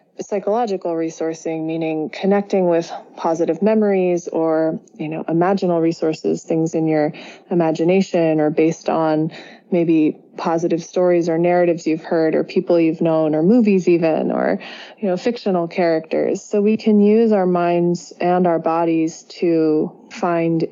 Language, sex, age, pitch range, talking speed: English, female, 20-39, 165-195 Hz, 140 wpm